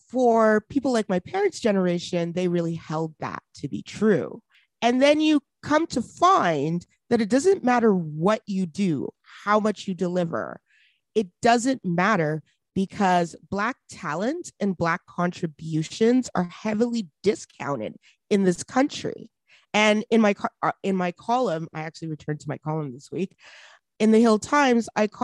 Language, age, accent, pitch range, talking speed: English, 30-49, American, 175-230 Hz, 150 wpm